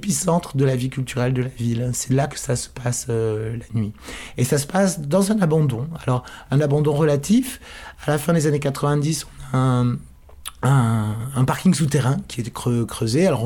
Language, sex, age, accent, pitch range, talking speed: French, male, 20-39, French, 125-150 Hz, 200 wpm